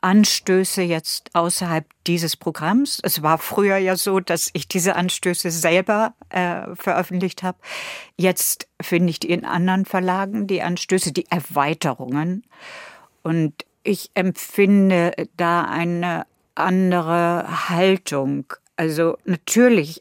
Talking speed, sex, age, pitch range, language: 115 wpm, female, 60-79, 155-190 Hz, German